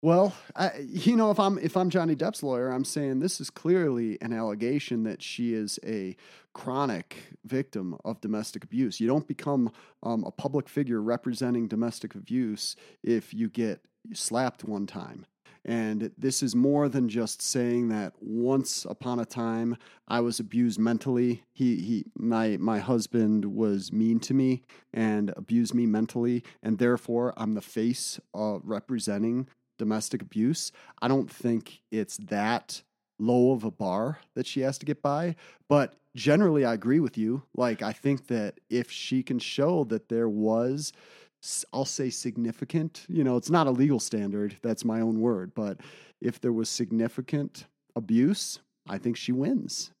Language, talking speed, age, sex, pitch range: English, 165 wpm, 30-49, male, 115-140 Hz